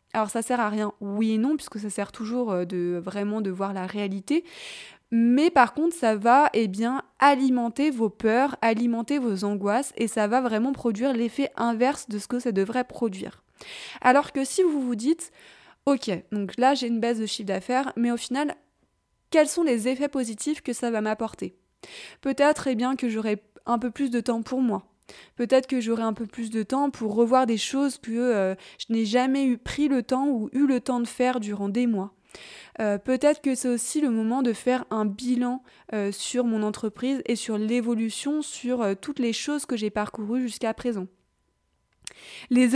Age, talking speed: 20-39, 200 wpm